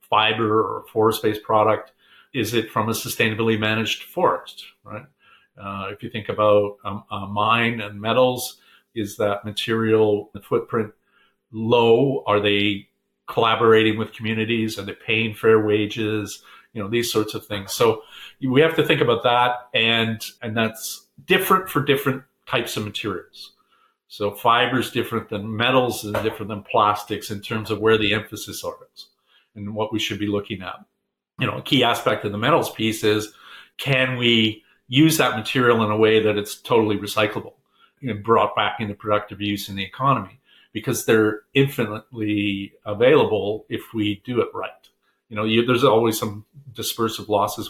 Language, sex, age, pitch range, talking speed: English, male, 50-69, 105-120 Hz, 160 wpm